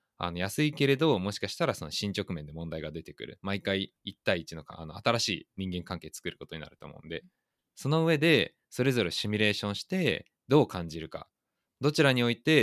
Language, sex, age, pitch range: Japanese, male, 20-39, 85-135 Hz